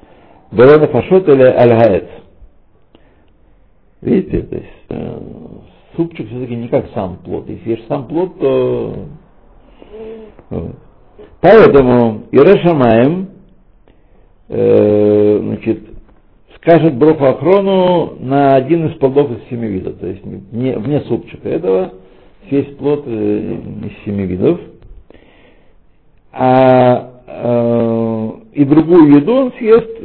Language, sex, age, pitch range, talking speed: Russian, male, 60-79, 105-145 Hz, 100 wpm